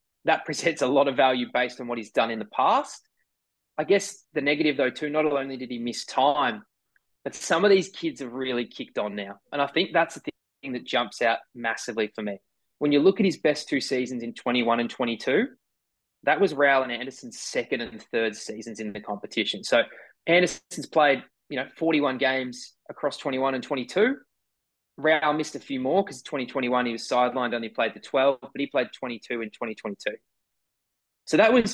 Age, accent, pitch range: 20-39, Australian, 120-155 Hz